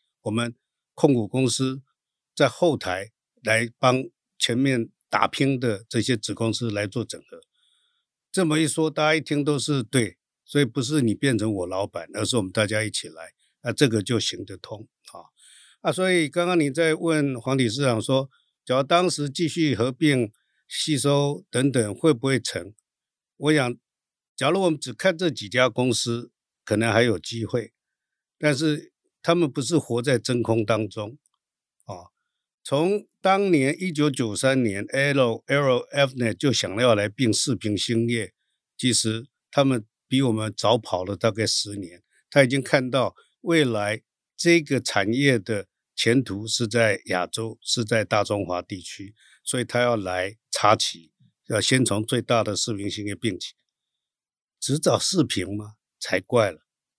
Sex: male